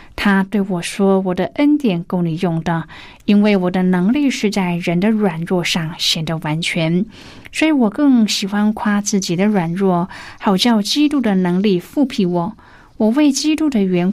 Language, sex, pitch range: Chinese, female, 175-225 Hz